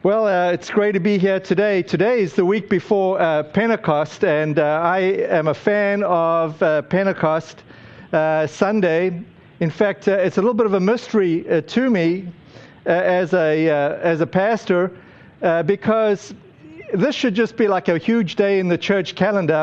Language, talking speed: English, 175 wpm